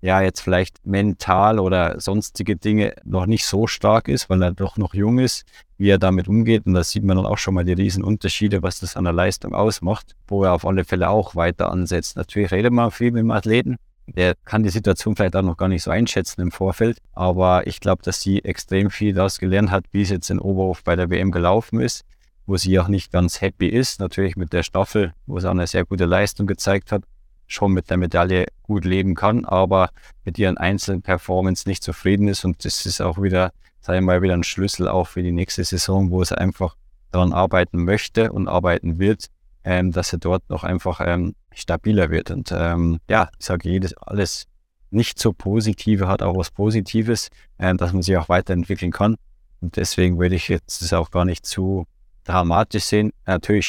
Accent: German